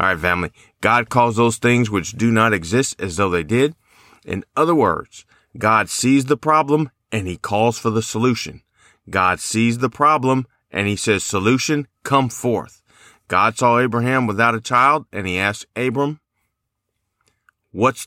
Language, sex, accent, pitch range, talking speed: English, male, American, 100-125 Hz, 165 wpm